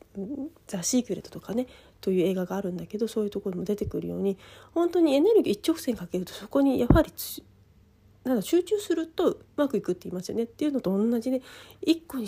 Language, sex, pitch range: Japanese, female, 180-260 Hz